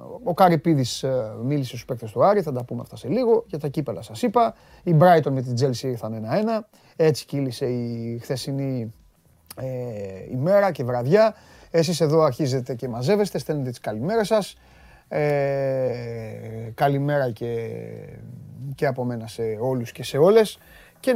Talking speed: 155 wpm